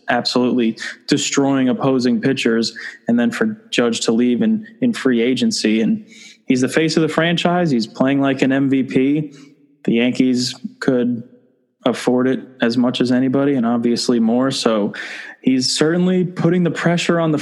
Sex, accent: male, American